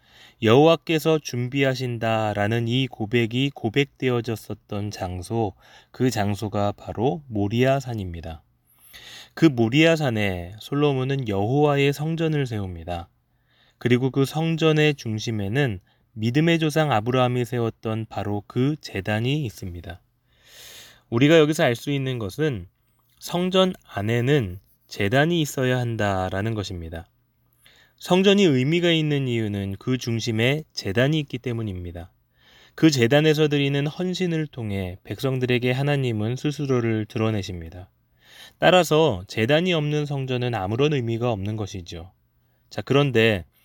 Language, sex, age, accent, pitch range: Korean, male, 20-39, native, 110-145 Hz